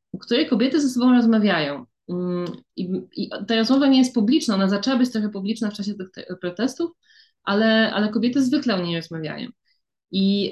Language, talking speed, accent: Polish, 170 wpm, native